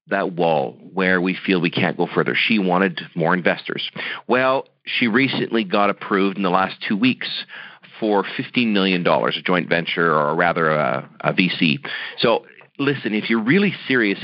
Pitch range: 95-140 Hz